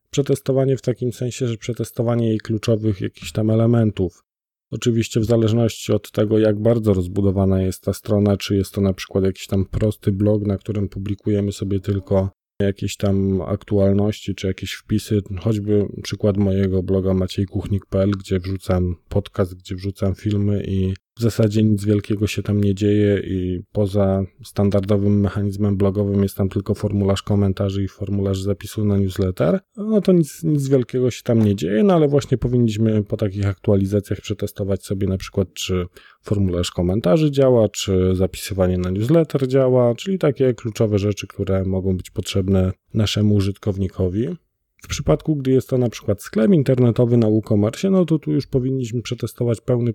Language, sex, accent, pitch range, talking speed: Polish, male, native, 100-115 Hz, 160 wpm